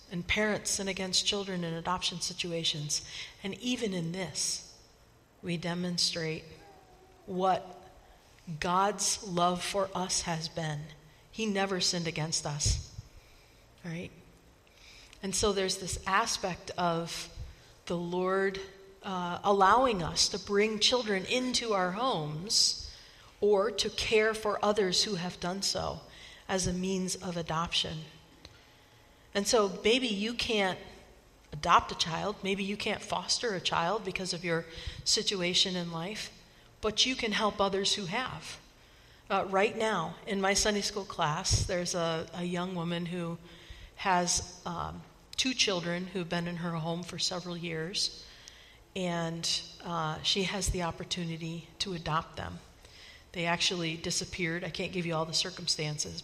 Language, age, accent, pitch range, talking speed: English, 50-69, American, 170-195 Hz, 140 wpm